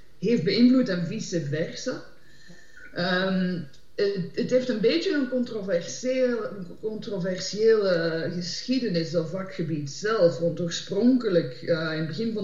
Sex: female